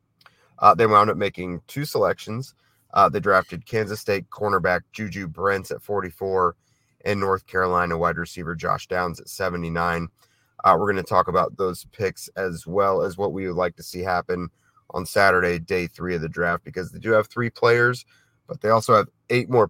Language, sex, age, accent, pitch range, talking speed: English, male, 30-49, American, 90-120 Hz, 190 wpm